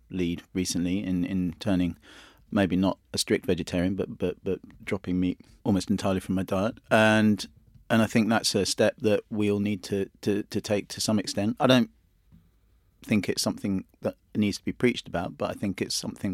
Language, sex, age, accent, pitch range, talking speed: English, male, 30-49, British, 95-110 Hz, 195 wpm